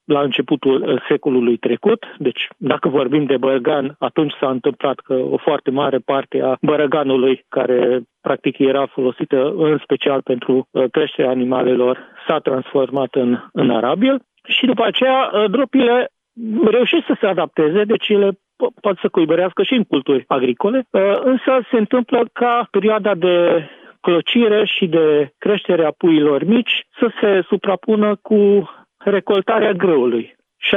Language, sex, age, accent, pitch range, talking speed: Romanian, male, 40-59, native, 140-210 Hz, 140 wpm